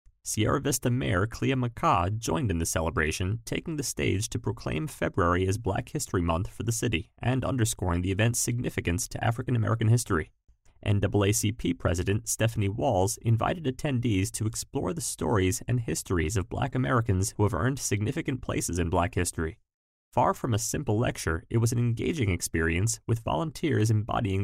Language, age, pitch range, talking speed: English, 30-49, 95-125 Hz, 165 wpm